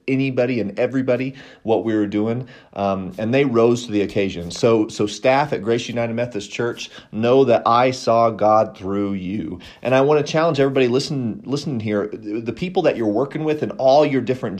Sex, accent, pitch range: male, American, 100-130 Hz